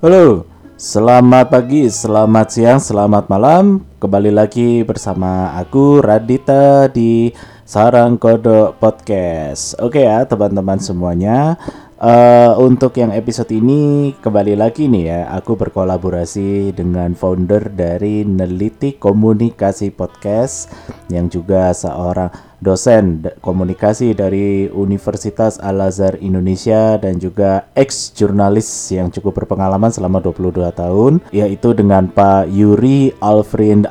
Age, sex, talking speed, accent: 20-39, male, 105 wpm, native